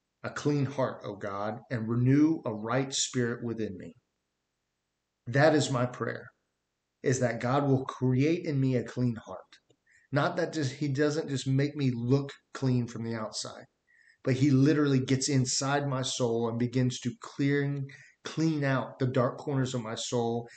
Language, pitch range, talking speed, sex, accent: English, 120-140 Hz, 170 wpm, male, American